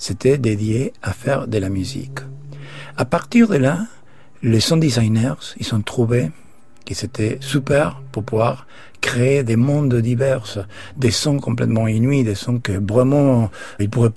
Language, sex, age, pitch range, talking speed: French, male, 60-79, 110-135 Hz, 155 wpm